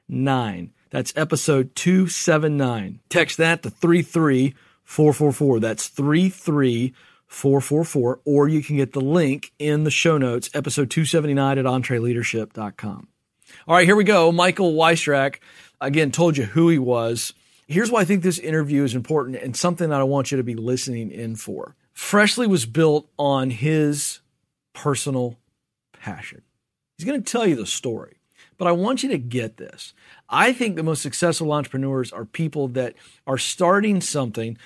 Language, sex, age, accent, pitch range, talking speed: English, male, 40-59, American, 130-165 Hz, 150 wpm